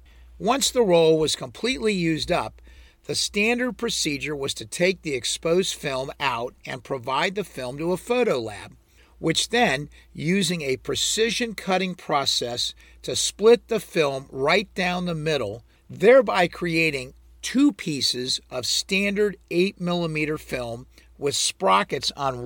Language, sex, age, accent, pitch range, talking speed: English, male, 50-69, American, 130-195 Hz, 135 wpm